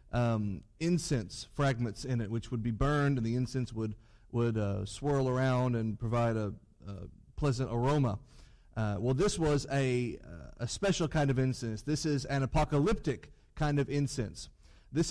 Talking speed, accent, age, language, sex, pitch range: 165 wpm, American, 30-49, English, male, 120-155 Hz